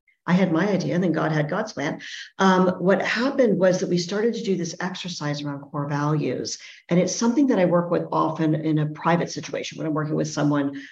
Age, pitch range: 50-69, 155-185 Hz